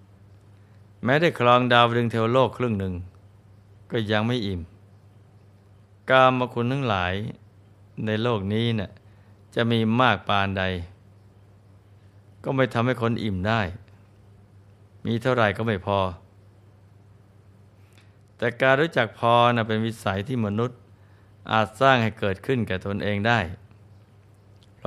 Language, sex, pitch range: Thai, male, 100-115 Hz